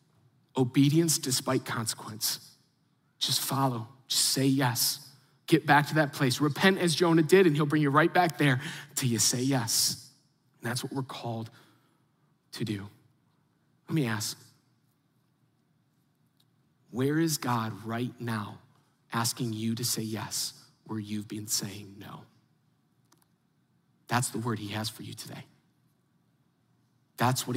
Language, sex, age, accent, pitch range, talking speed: English, male, 30-49, American, 125-180 Hz, 135 wpm